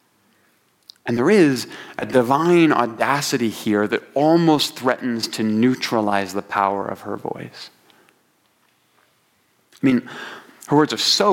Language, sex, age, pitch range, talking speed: English, male, 30-49, 115-150 Hz, 120 wpm